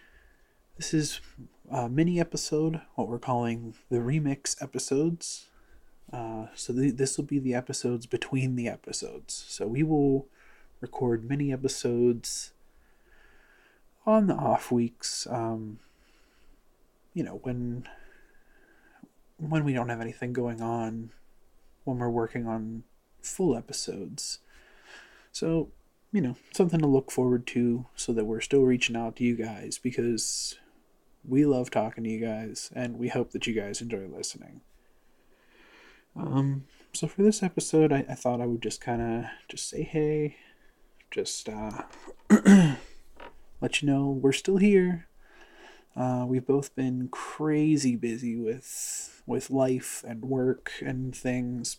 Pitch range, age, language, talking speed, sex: 120-155 Hz, 30-49, English, 135 wpm, male